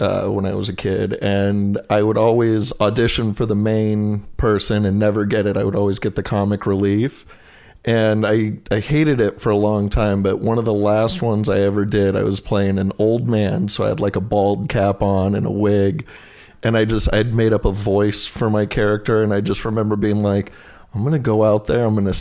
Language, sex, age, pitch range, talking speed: English, male, 30-49, 100-115 Hz, 235 wpm